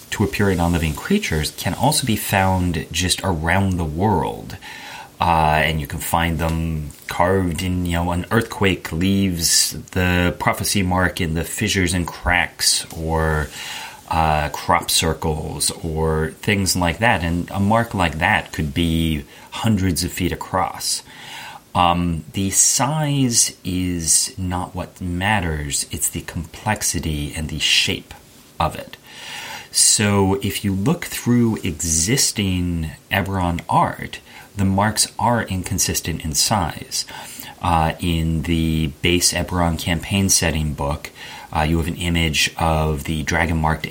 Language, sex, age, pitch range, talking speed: English, male, 30-49, 80-95 Hz, 135 wpm